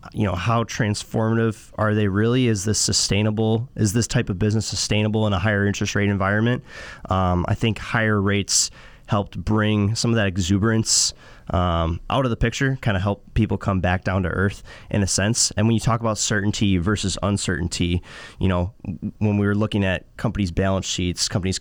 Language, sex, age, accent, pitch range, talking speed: English, male, 20-39, American, 95-115 Hz, 190 wpm